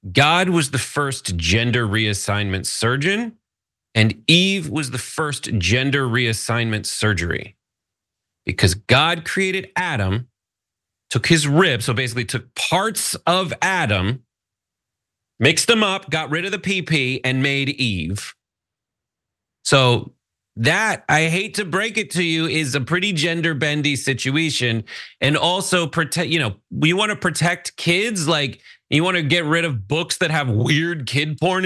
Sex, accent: male, American